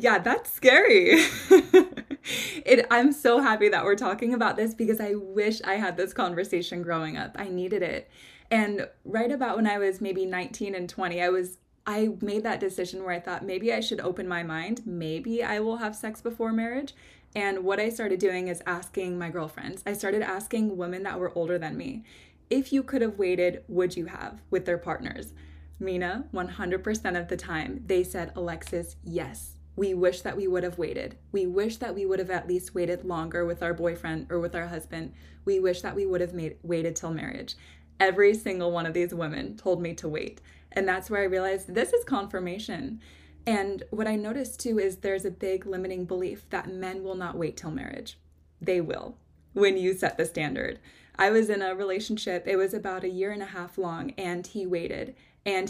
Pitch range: 175-215 Hz